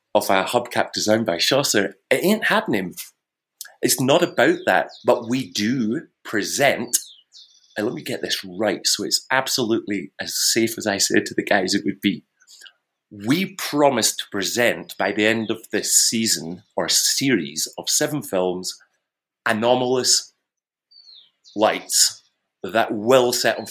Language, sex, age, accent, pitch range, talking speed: English, male, 30-49, British, 100-130 Hz, 145 wpm